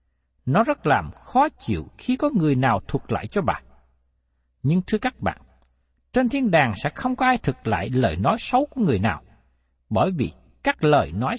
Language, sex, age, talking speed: Vietnamese, male, 60-79, 195 wpm